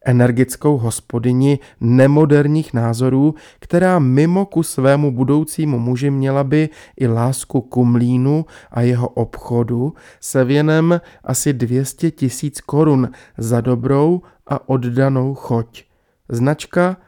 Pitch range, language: 120-145 Hz, Czech